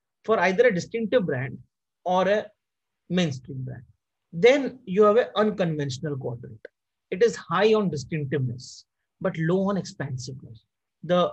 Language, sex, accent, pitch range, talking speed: English, male, Indian, 150-200 Hz, 130 wpm